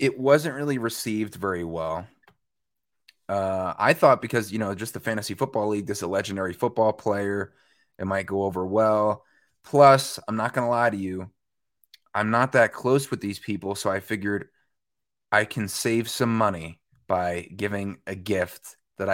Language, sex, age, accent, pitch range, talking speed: English, male, 20-39, American, 95-115 Hz, 170 wpm